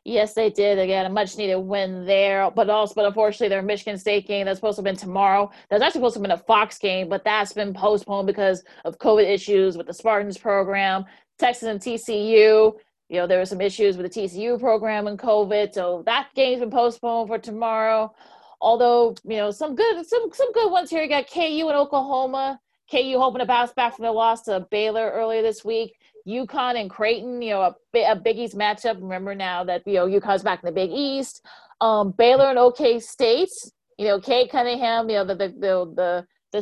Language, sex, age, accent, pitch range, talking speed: English, female, 30-49, American, 195-235 Hz, 210 wpm